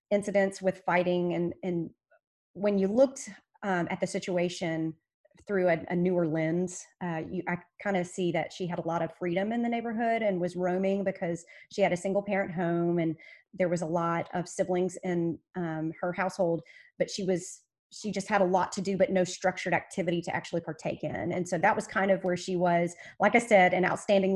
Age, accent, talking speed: 30-49, American, 210 wpm